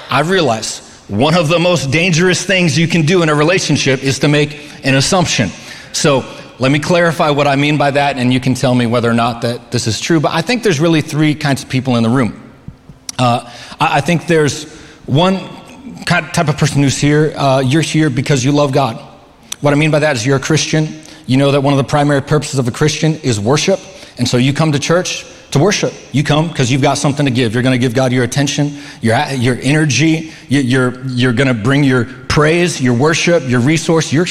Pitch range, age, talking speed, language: 135-160 Hz, 30-49, 230 wpm, English